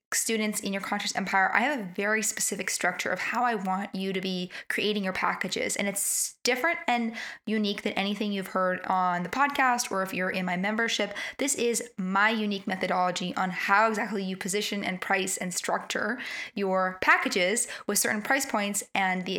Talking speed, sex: 190 wpm, female